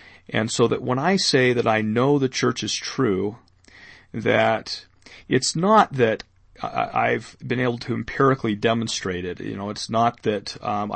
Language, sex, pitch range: English, male, 105-130 Hz